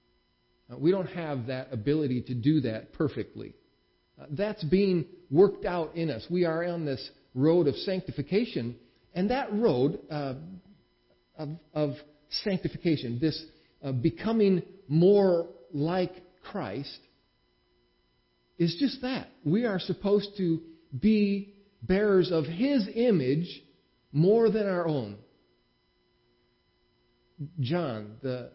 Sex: male